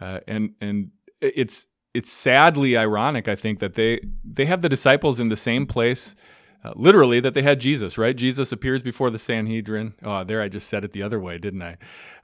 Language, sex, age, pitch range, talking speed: English, male, 30-49, 105-130 Hz, 210 wpm